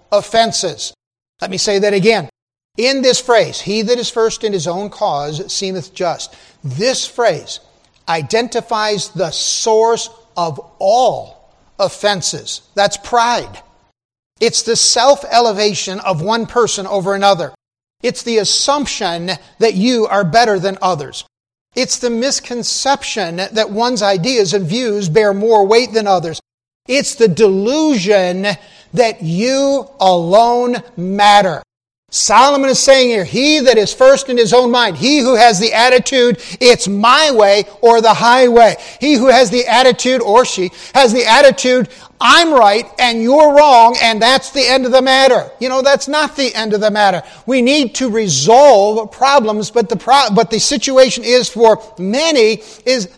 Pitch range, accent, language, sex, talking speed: 200-255 Hz, American, English, male, 155 wpm